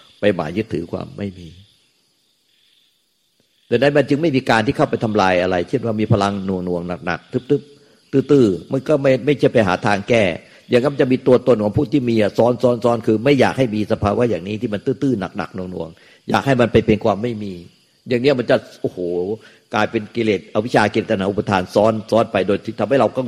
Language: Thai